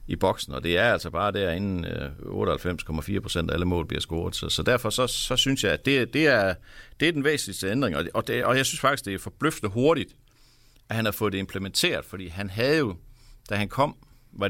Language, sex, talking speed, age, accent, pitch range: Danish, male, 235 wpm, 60-79, native, 90-120 Hz